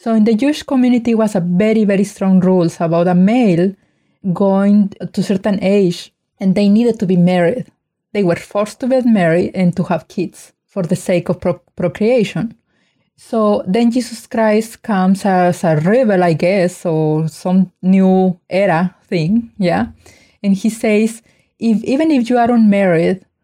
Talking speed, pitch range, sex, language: 165 wpm, 180-225 Hz, female, English